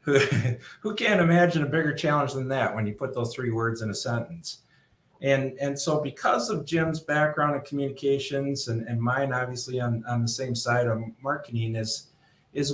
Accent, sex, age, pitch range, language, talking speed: American, male, 50-69, 125-155 Hz, English, 185 wpm